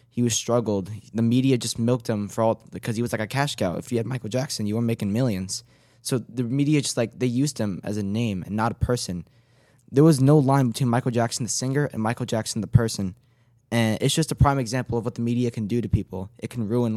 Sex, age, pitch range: male, 10-29, 110-125 Hz